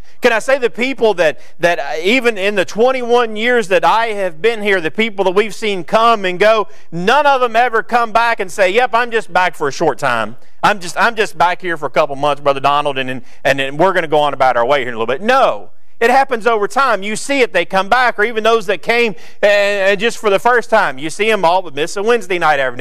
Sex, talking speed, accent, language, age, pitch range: male, 265 wpm, American, English, 40-59, 160-230 Hz